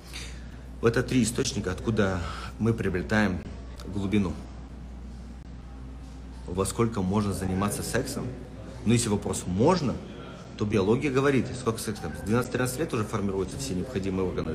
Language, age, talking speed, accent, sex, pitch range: Russian, 40-59, 130 wpm, native, male, 90-120 Hz